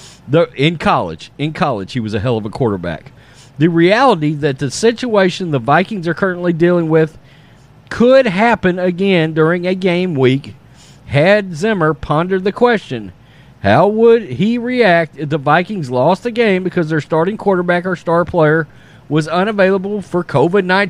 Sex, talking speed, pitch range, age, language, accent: male, 160 wpm, 140-200 Hz, 40-59, English, American